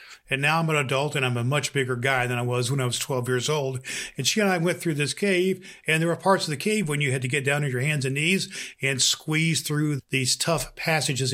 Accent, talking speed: American, 275 wpm